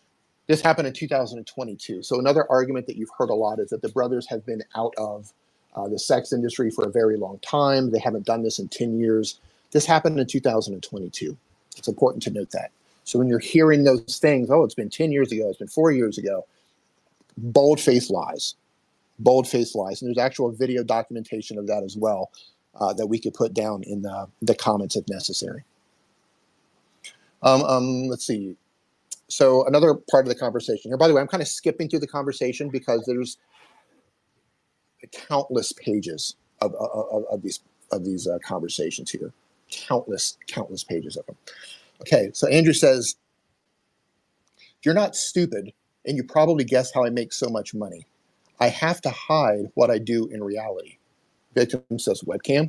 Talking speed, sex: 175 wpm, male